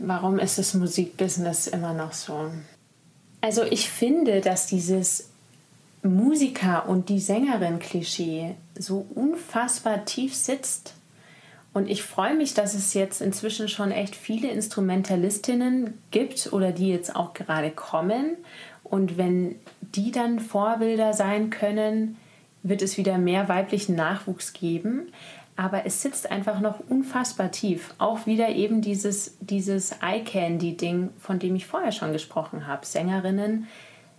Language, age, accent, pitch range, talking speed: German, 30-49, German, 180-215 Hz, 130 wpm